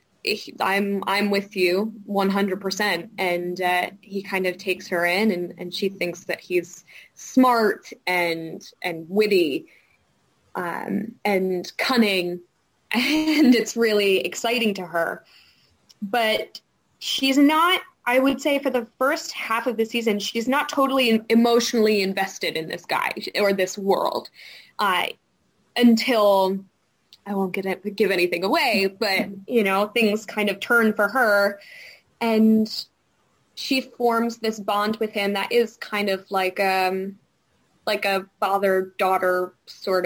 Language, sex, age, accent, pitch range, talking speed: English, female, 10-29, American, 185-230 Hz, 140 wpm